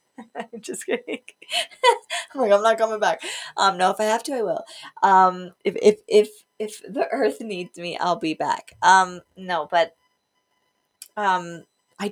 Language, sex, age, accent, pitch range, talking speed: English, female, 20-39, American, 180-245 Hz, 170 wpm